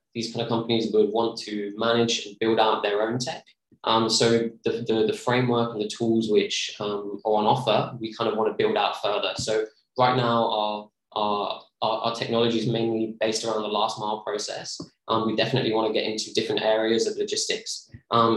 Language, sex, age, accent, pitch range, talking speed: English, male, 20-39, British, 105-120 Hz, 205 wpm